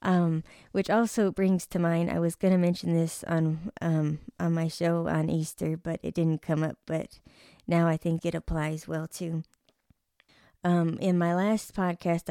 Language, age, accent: English, 20-39, American